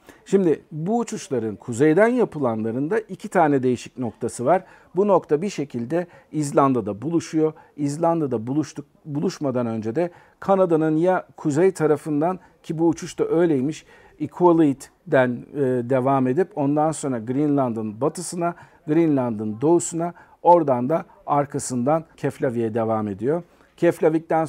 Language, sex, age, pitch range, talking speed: Turkish, male, 50-69, 130-165 Hz, 115 wpm